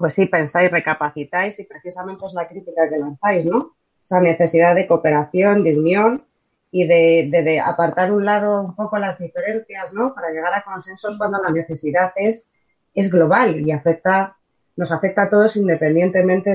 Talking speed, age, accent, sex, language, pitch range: 175 wpm, 30-49, Spanish, female, Spanish, 160-195 Hz